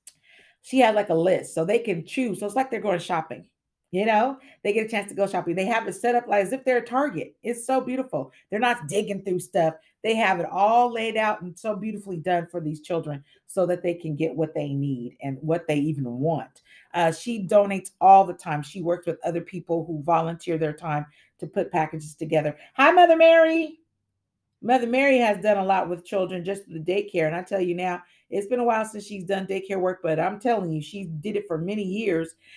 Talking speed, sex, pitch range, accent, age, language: 230 wpm, female, 165-235 Hz, American, 40-59, English